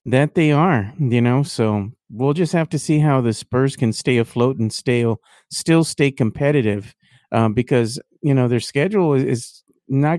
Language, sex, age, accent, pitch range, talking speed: English, male, 40-59, American, 120-150 Hz, 185 wpm